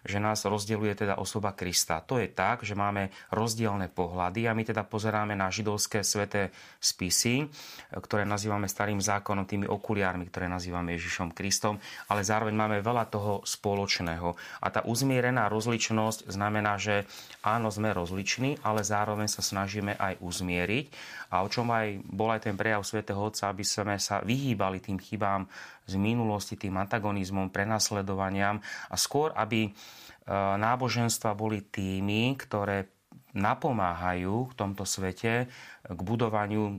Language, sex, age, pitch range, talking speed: Slovak, male, 30-49, 100-110 Hz, 140 wpm